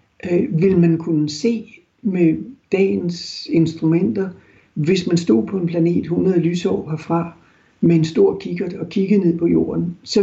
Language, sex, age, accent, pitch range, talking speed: Danish, male, 60-79, native, 160-195 Hz, 155 wpm